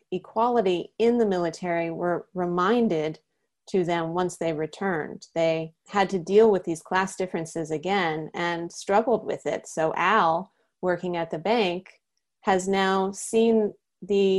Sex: female